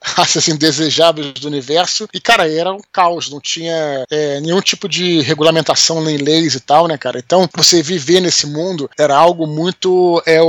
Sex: male